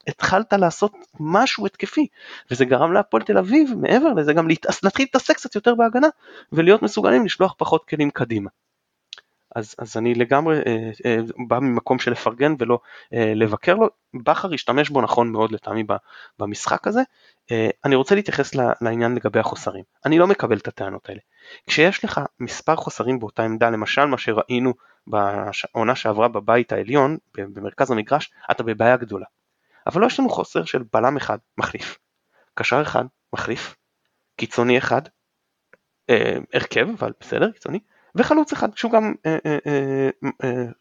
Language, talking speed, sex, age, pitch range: Hebrew, 150 wpm, male, 20-39, 115-150 Hz